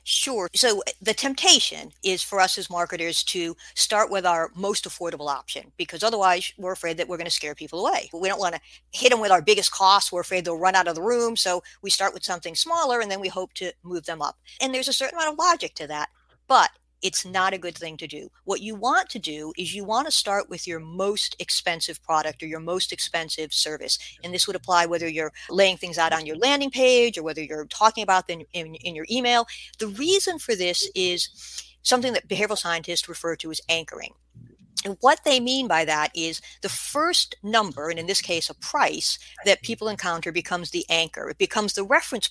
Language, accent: English, American